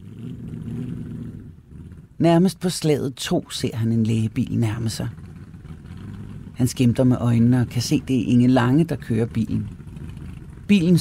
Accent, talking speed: native, 135 wpm